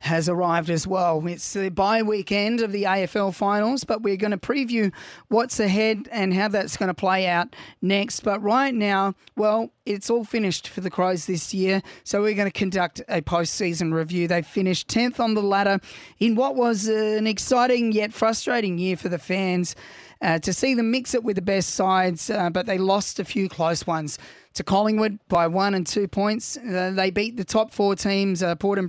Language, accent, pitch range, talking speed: English, Australian, 180-220 Hz, 205 wpm